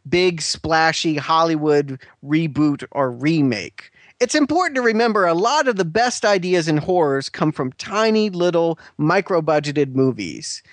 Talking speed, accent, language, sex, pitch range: 135 wpm, American, English, male, 145-185 Hz